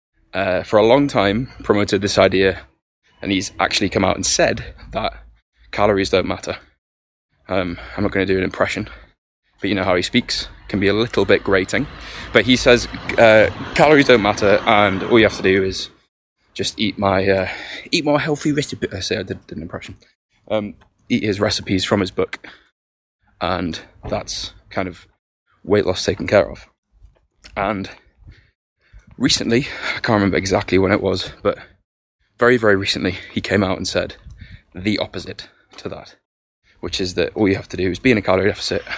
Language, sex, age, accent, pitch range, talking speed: English, male, 20-39, British, 95-105 Hz, 185 wpm